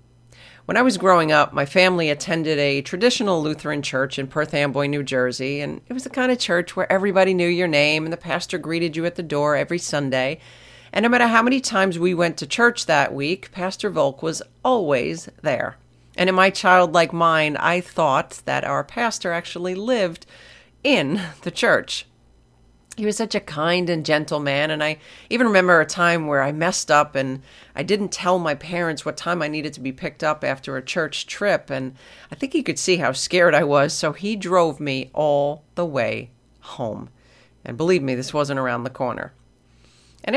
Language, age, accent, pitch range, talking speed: English, 40-59, American, 145-200 Hz, 200 wpm